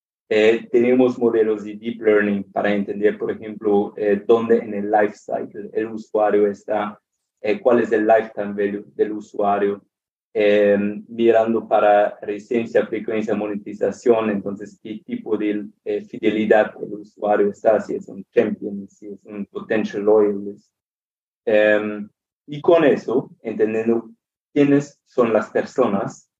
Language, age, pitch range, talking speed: Spanish, 30-49, 105-115 Hz, 135 wpm